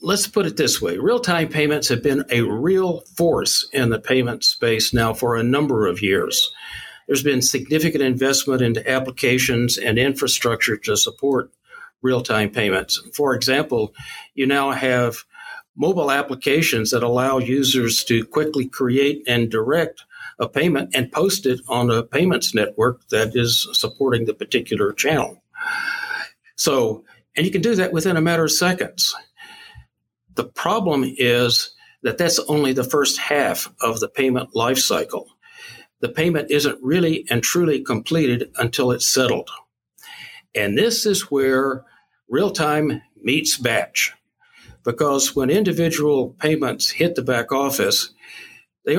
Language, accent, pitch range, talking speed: English, American, 125-170 Hz, 140 wpm